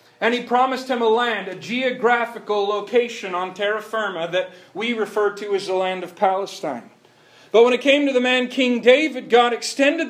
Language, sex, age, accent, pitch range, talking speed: English, male, 40-59, American, 170-235 Hz, 190 wpm